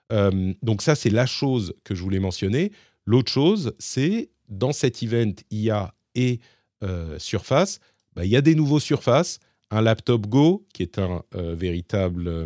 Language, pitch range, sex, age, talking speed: French, 95-130 Hz, male, 40-59, 170 wpm